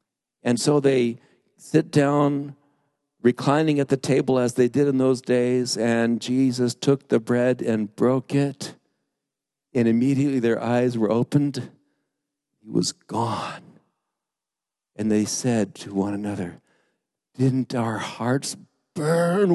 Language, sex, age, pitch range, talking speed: English, male, 60-79, 130-185 Hz, 130 wpm